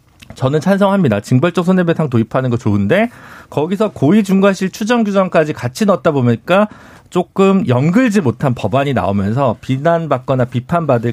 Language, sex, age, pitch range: Korean, male, 50-69, 125-195 Hz